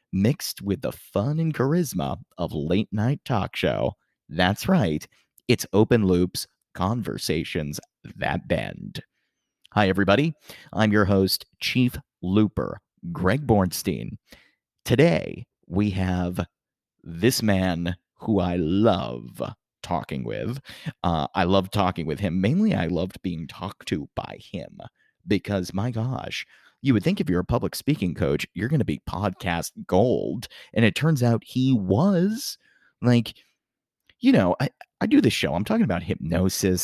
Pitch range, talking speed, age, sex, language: 90-125 Hz, 145 wpm, 30-49, male, English